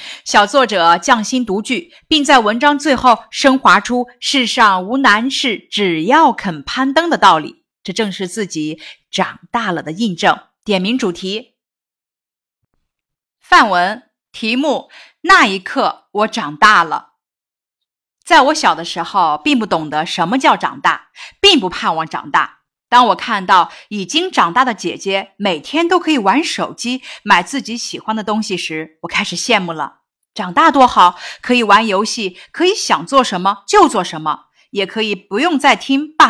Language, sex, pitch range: Chinese, female, 195-290 Hz